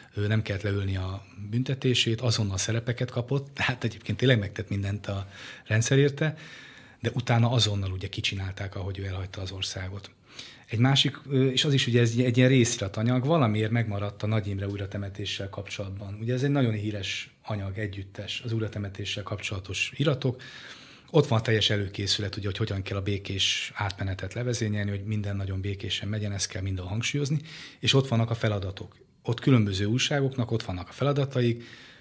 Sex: male